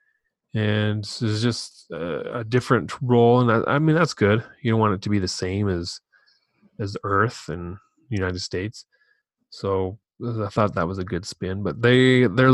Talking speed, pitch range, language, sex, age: 185 wpm, 100-120 Hz, English, male, 30-49